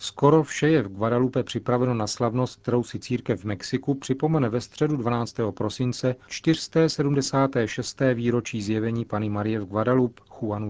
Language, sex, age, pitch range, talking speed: Czech, male, 40-59, 105-130 Hz, 145 wpm